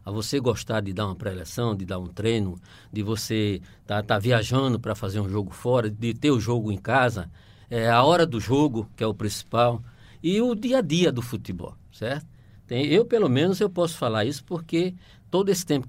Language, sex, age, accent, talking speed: Portuguese, male, 60-79, Brazilian, 215 wpm